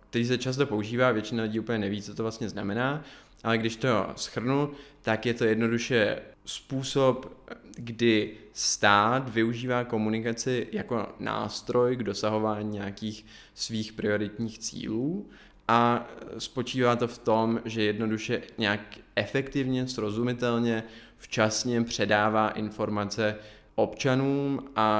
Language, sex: Czech, male